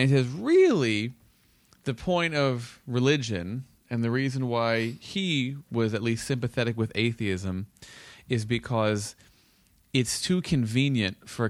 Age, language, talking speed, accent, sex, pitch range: 30-49, English, 125 wpm, American, male, 105-125 Hz